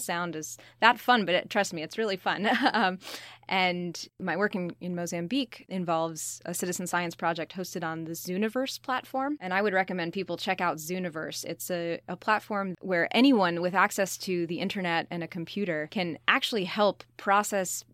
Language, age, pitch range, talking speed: English, 20-39, 165-195 Hz, 175 wpm